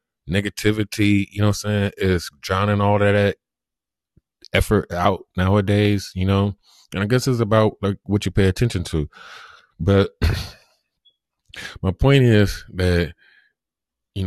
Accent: American